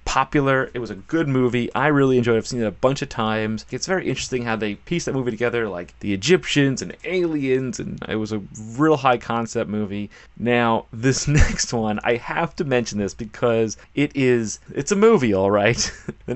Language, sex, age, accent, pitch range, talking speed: English, male, 30-49, American, 110-135 Hz, 205 wpm